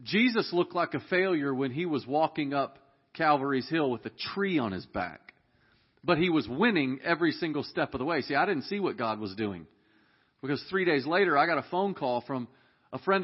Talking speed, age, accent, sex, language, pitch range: 220 wpm, 40-59, American, male, English, 130-175 Hz